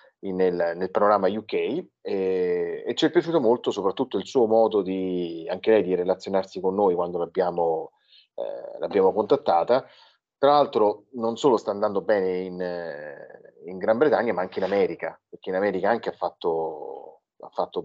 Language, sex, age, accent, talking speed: Italian, male, 30-49, native, 160 wpm